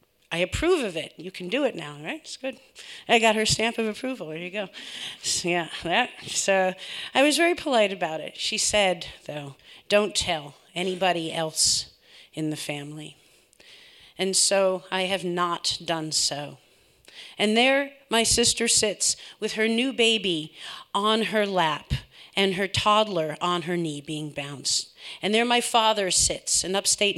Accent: American